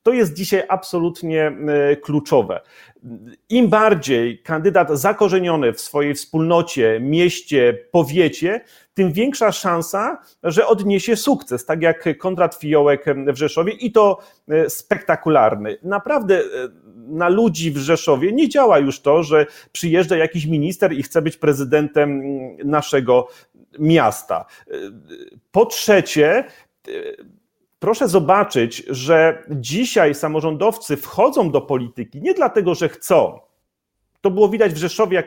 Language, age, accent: Polish, 40-59, native